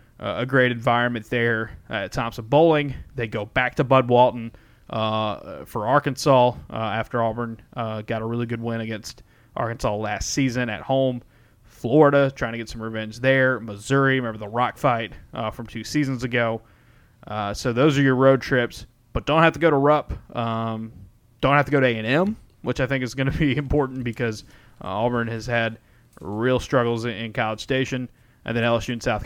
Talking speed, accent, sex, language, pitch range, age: 195 wpm, American, male, English, 115-135 Hz, 20-39